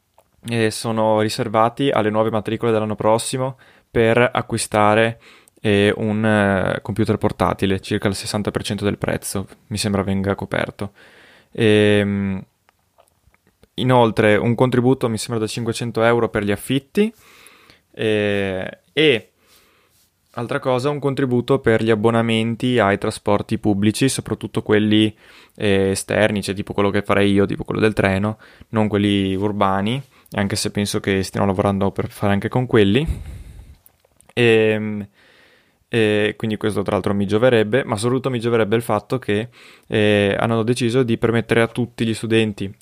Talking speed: 140 wpm